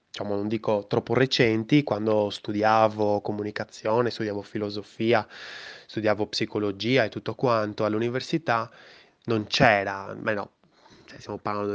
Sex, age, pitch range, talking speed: male, 20-39, 105-130 Hz, 115 wpm